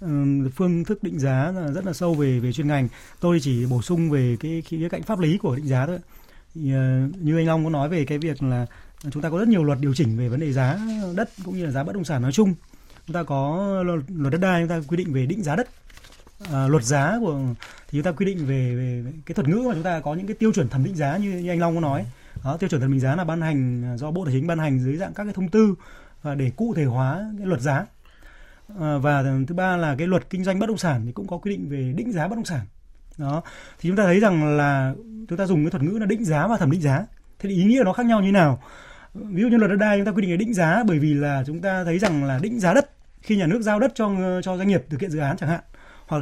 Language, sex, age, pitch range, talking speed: Vietnamese, male, 20-39, 140-190 Hz, 290 wpm